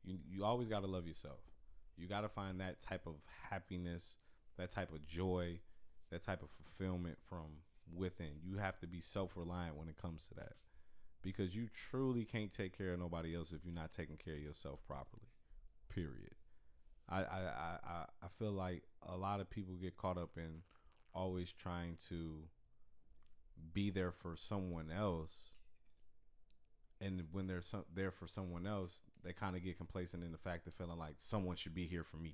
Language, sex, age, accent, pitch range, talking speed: English, male, 30-49, American, 80-95 Hz, 180 wpm